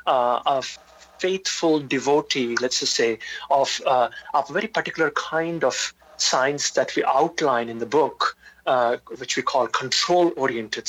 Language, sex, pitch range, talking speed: English, male, 140-210 Hz, 150 wpm